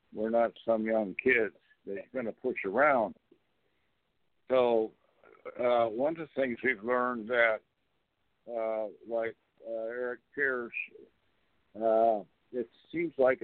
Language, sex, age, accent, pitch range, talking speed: English, male, 60-79, American, 110-120 Hz, 125 wpm